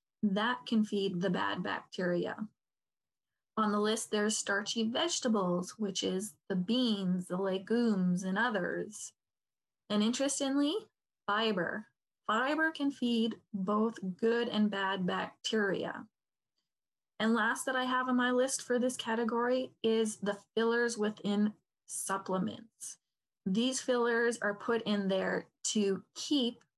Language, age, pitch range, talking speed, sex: English, 20-39, 200-245 Hz, 125 wpm, female